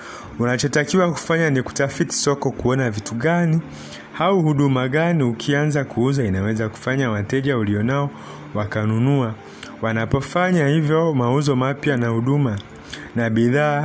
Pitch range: 115-150 Hz